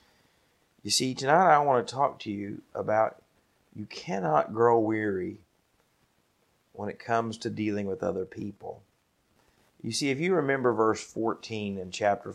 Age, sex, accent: 40-59, male, American